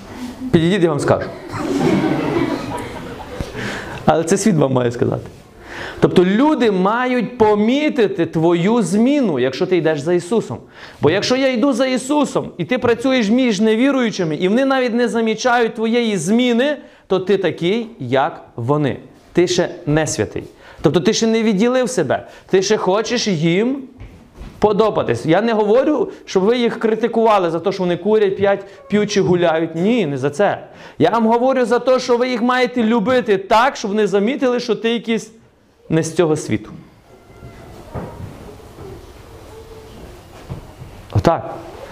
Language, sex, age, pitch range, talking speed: Ukrainian, male, 30-49, 175-240 Hz, 145 wpm